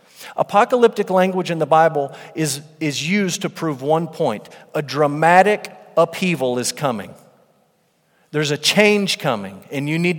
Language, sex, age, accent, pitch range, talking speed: English, male, 40-59, American, 150-205 Hz, 140 wpm